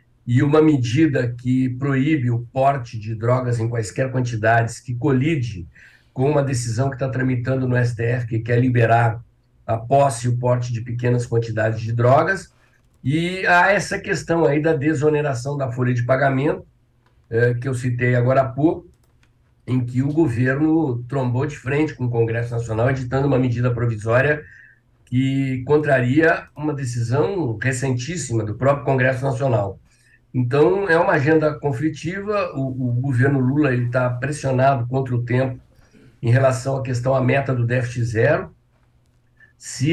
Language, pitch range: Portuguese, 120-145 Hz